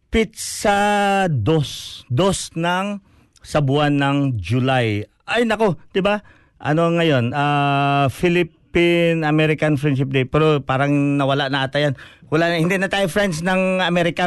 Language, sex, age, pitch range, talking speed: Filipino, male, 50-69, 130-170 Hz, 130 wpm